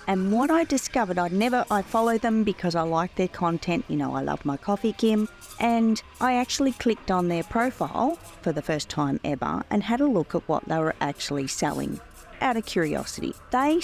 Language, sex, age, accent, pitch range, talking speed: English, female, 40-59, Australian, 175-250 Hz, 205 wpm